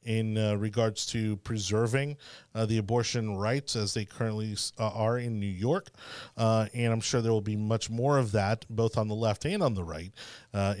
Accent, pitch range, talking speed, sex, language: American, 105-130 Hz, 200 wpm, male, English